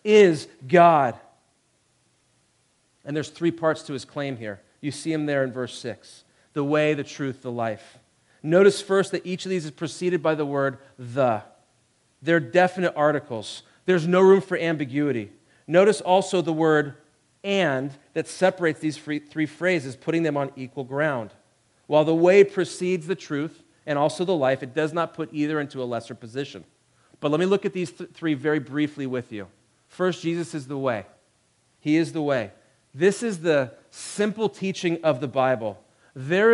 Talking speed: 175 wpm